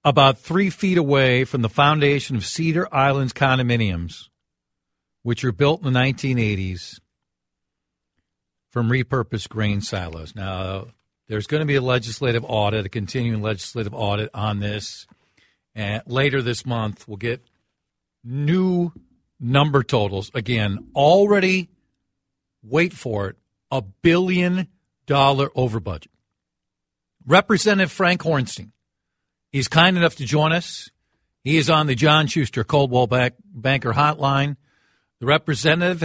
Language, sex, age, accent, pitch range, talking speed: English, male, 50-69, American, 110-150 Hz, 120 wpm